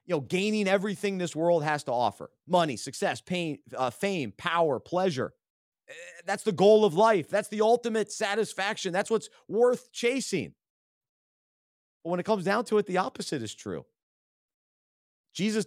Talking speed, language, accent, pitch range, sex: 155 wpm, English, American, 165-235 Hz, male